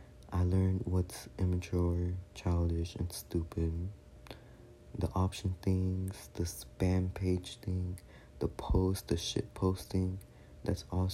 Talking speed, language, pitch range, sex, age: 115 wpm, English, 80-95 Hz, male, 20-39